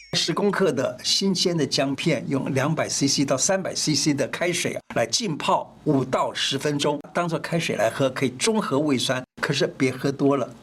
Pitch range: 140-220 Hz